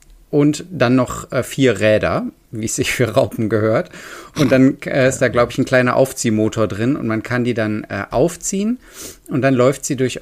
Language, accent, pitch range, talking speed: German, German, 105-135 Hz, 205 wpm